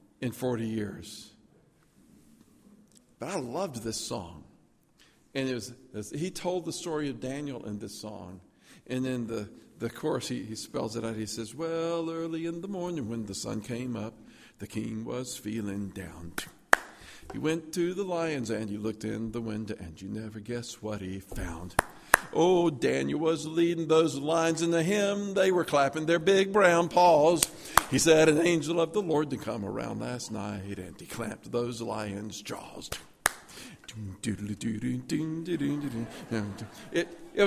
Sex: male